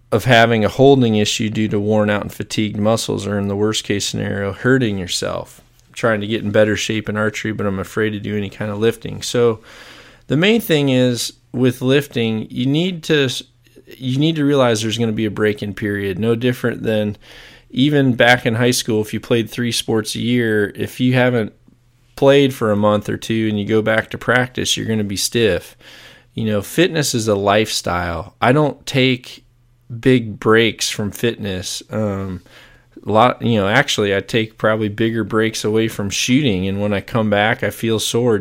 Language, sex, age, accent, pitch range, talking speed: English, male, 20-39, American, 105-120 Hz, 205 wpm